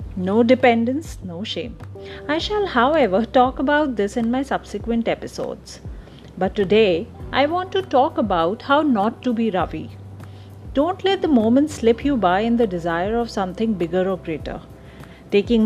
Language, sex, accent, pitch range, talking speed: English, female, Indian, 185-275 Hz, 160 wpm